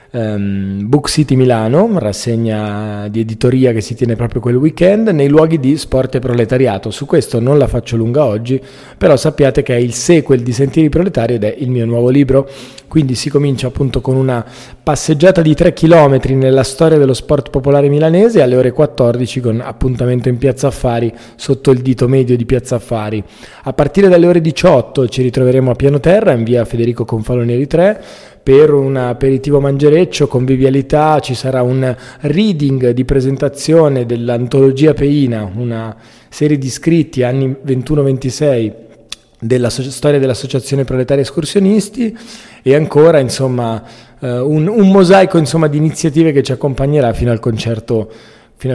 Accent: native